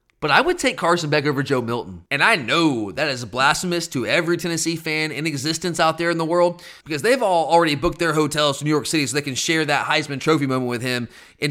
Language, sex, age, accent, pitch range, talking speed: English, male, 30-49, American, 150-205 Hz, 250 wpm